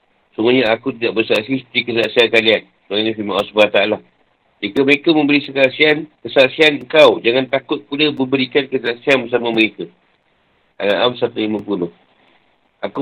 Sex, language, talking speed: male, Malay, 120 wpm